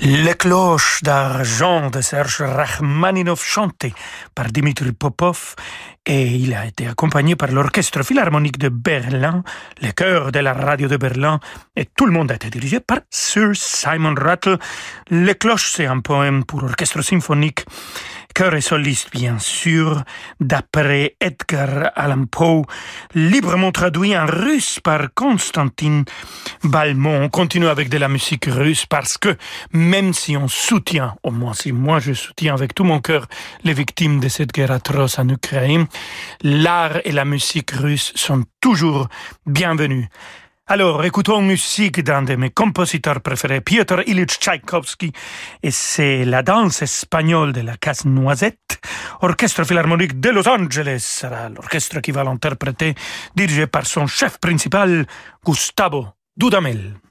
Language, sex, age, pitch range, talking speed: French, male, 40-59, 135-175 Hz, 150 wpm